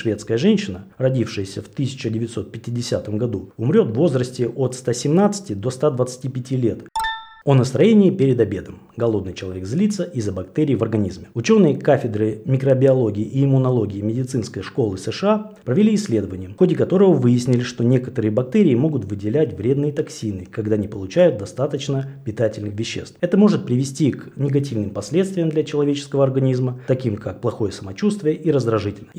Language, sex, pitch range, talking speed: Russian, male, 110-155 Hz, 140 wpm